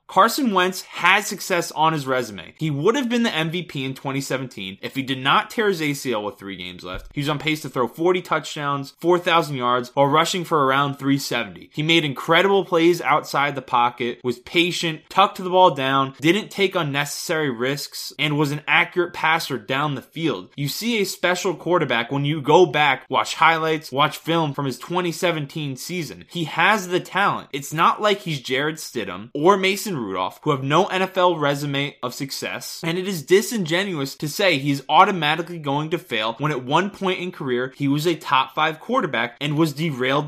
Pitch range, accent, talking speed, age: 135-175 Hz, American, 190 wpm, 20-39